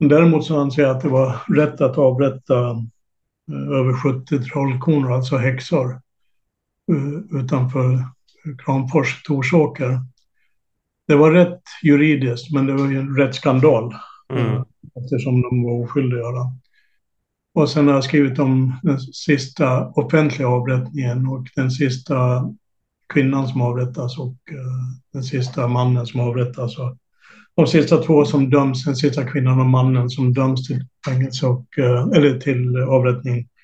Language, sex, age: Swedish, male, 60-79